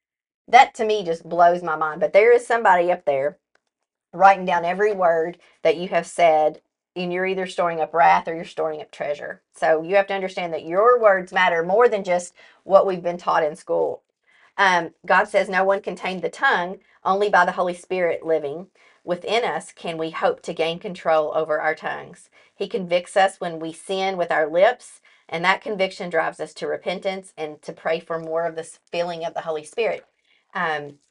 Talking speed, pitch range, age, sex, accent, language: 200 wpm, 160-200 Hz, 40-59, female, American, English